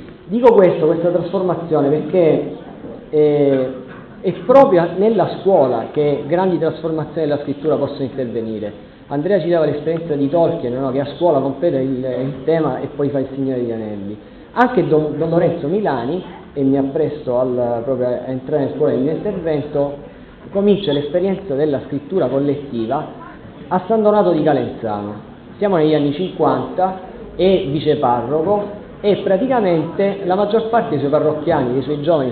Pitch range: 135-180 Hz